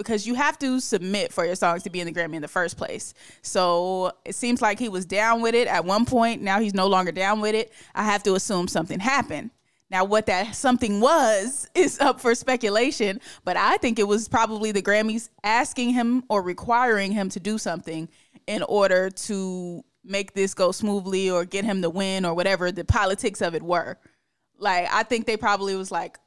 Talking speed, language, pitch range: 210 wpm, English, 195-255 Hz